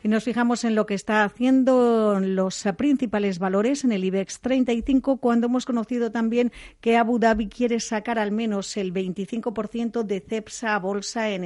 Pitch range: 200-235 Hz